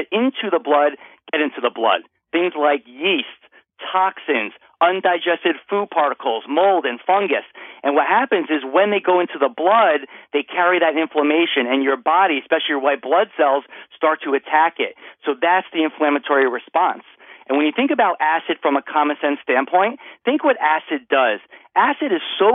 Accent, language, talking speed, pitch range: American, English, 175 wpm, 145-180 Hz